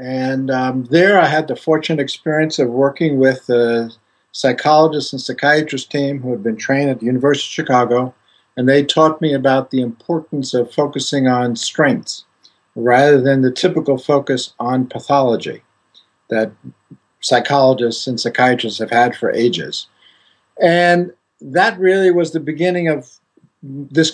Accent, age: American, 50-69